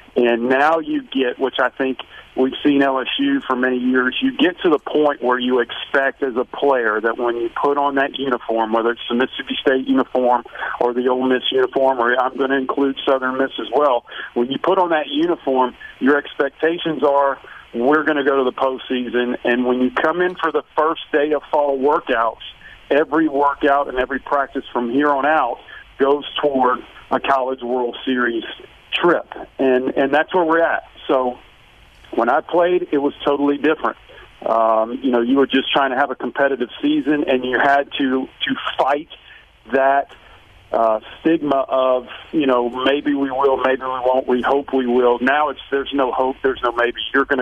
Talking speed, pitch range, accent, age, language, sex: 195 wpm, 125-145 Hz, American, 50-69, English, male